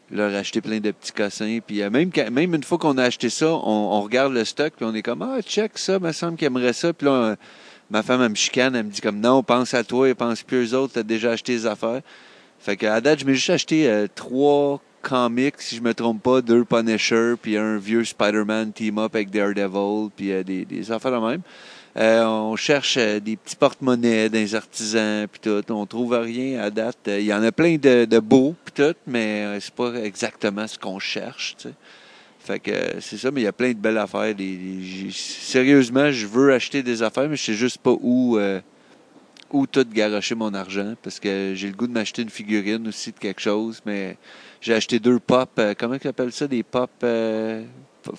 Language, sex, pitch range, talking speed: French, male, 105-130 Hz, 235 wpm